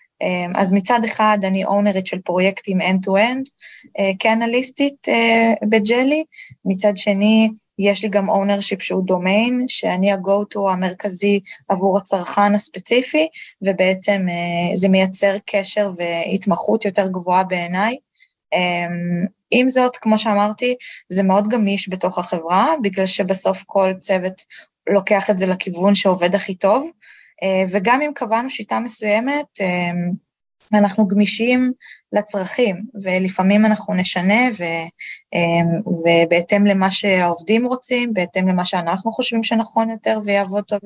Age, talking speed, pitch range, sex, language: 20-39, 120 wpm, 185-220 Hz, female, English